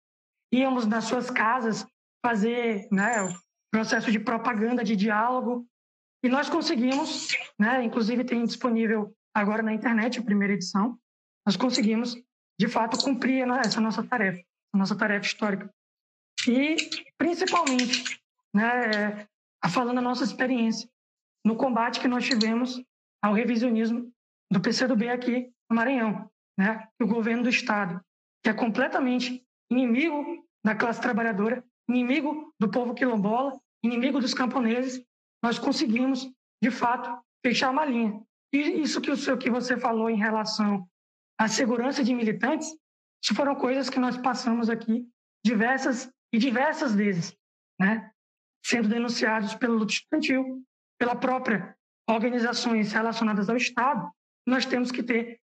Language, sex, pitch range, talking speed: Portuguese, female, 220-255 Hz, 130 wpm